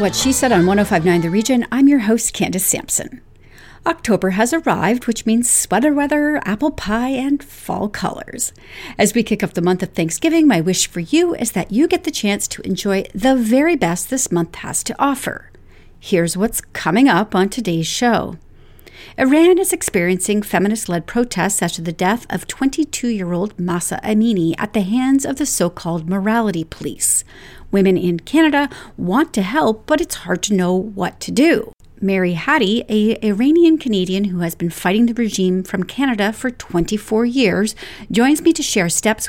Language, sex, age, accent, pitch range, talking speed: English, female, 40-59, American, 185-260 Hz, 180 wpm